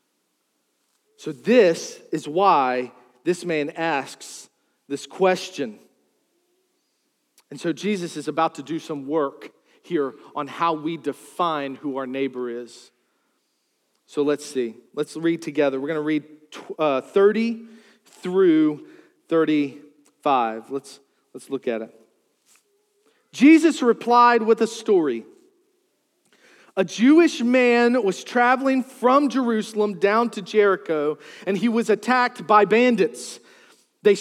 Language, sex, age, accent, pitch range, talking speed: English, male, 40-59, American, 155-255 Hz, 120 wpm